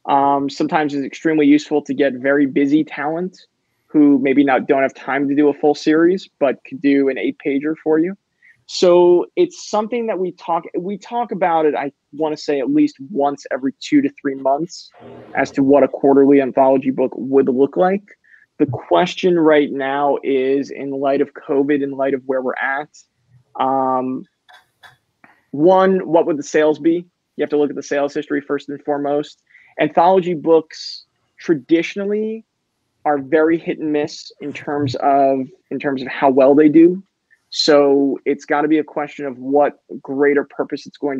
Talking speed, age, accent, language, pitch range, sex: 180 wpm, 20-39, American, English, 140-160 Hz, male